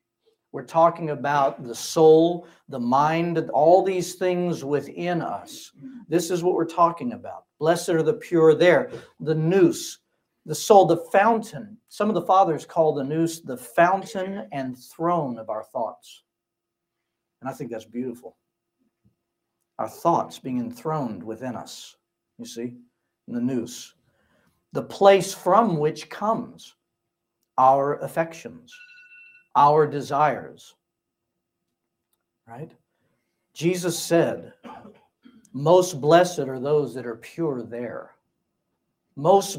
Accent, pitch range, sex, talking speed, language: American, 130-180 Hz, male, 120 wpm, English